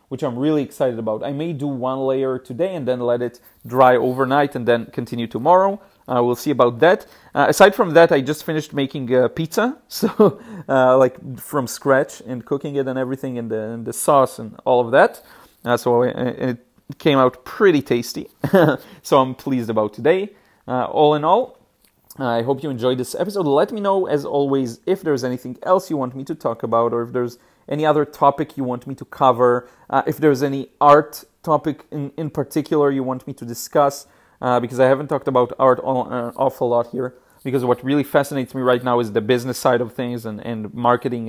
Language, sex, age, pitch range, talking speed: English, male, 30-49, 120-150 Hz, 210 wpm